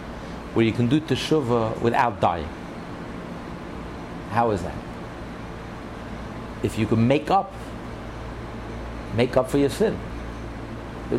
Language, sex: English, male